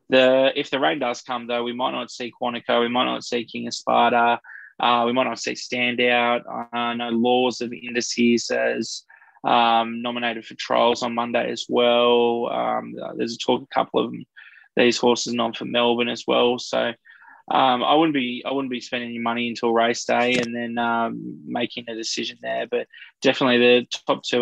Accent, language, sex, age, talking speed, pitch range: Australian, English, male, 20-39, 200 wpm, 120-125 Hz